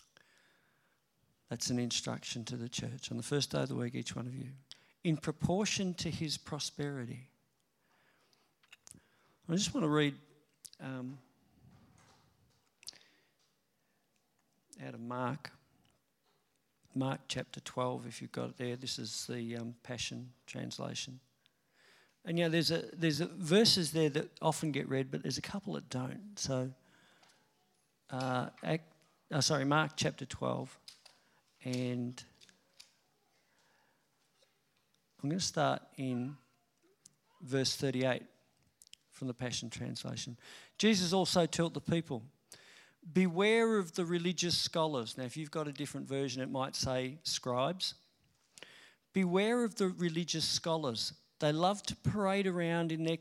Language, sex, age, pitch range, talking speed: English, male, 50-69, 130-170 Hz, 130 wpm